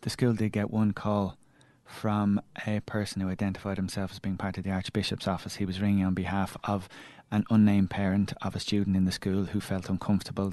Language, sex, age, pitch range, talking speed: English, male, 30-49, 95-115 Hz, 210 wpm